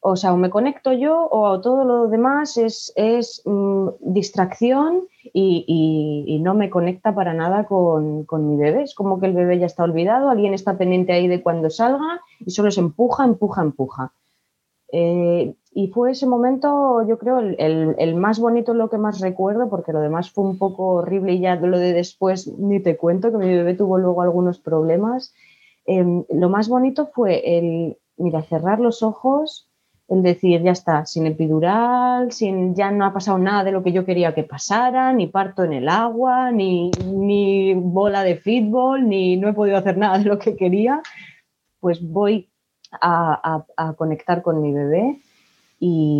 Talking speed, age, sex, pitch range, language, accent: 190 wpm, 20-39, female, 175-230 Hz, Spanish, Spanish